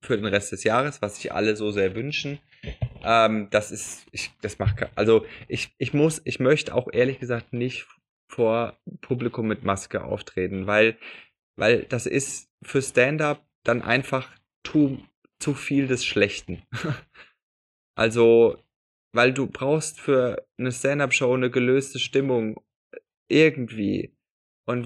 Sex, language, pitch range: male, German, 115-140 Hz